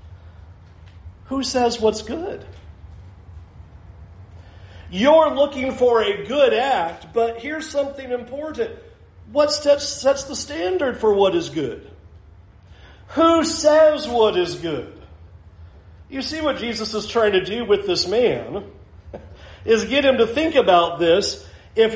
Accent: American